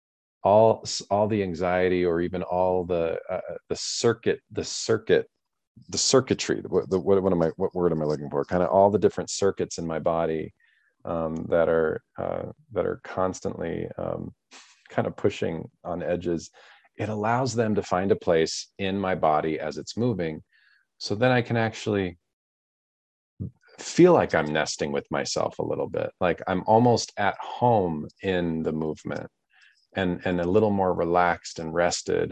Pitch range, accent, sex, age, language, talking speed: 80-105 Hz, American, male, 40-59, English, 170 wpm